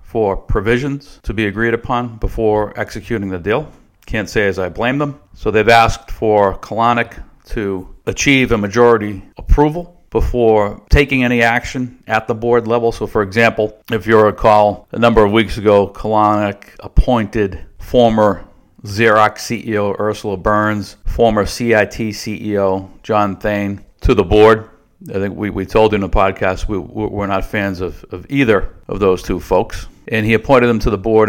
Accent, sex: American, male